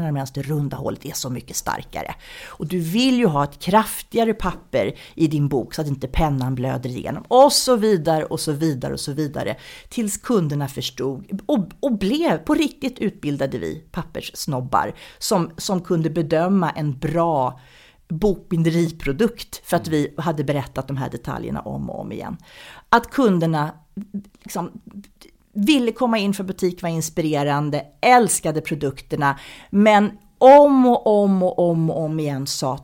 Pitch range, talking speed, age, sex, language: 145-205 Hz, 155 wpm, 40-59, female, Swedish